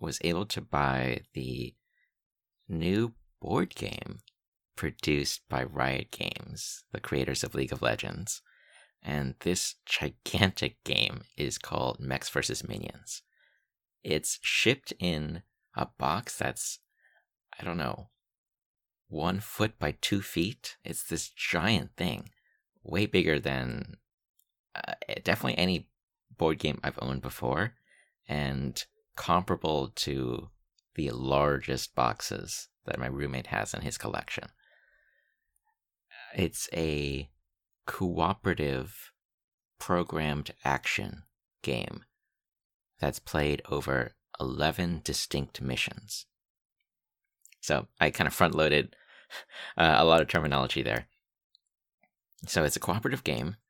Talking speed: 105 wpm